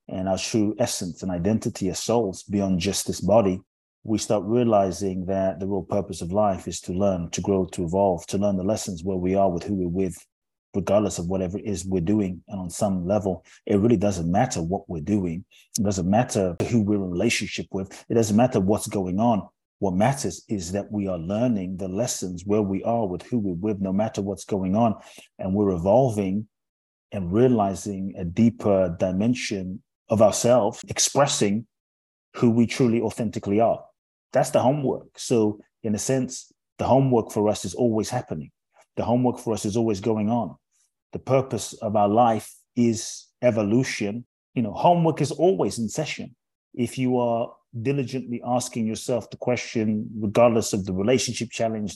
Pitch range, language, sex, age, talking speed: 95-115 Hz, English, male, 30-49, 180 wpm